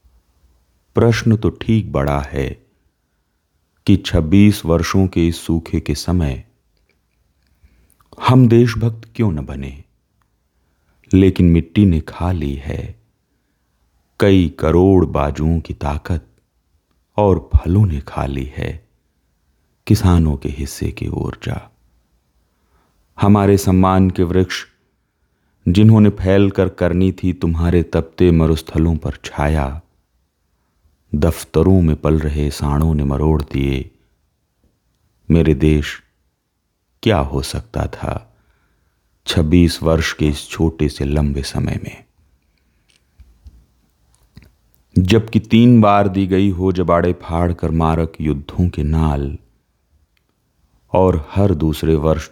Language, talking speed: Hindi, 110 wpm